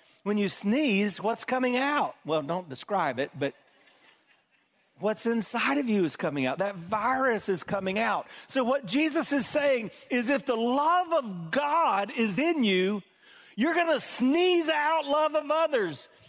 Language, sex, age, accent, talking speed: English, male, 40-59, American, 165 wpm